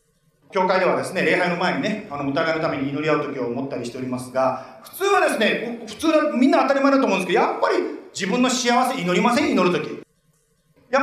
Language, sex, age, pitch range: Japanese, male, 40-59, 180-285 Hz